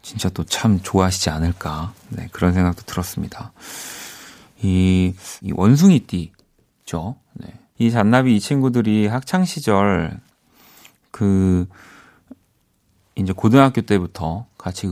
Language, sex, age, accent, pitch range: Korean, male, 30-49, native, 90-125 Hz